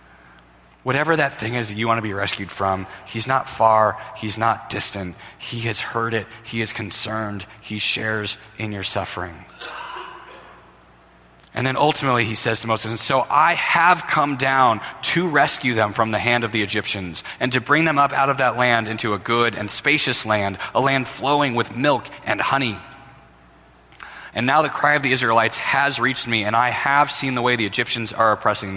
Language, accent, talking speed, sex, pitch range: English, American, 195 wpm, male, 95-120 Hz